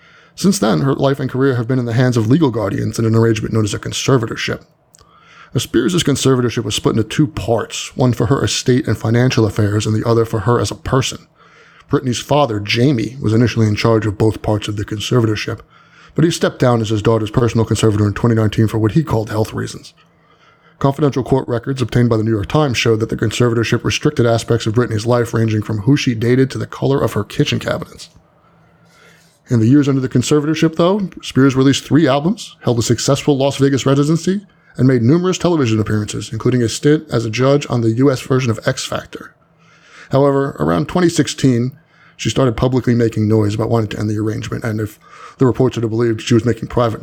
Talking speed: 210 wpm